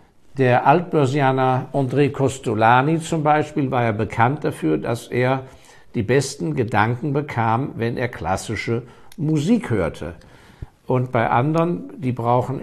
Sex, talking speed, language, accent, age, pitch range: male, 125 wpm, German, German, 60-79, 110-145 Hz